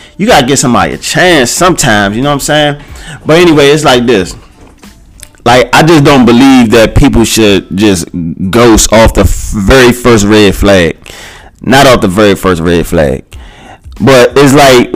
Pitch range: 115-160 Hz